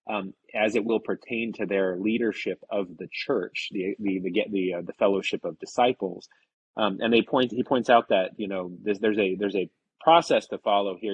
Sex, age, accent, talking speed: male, 30-49, American, 210 wpm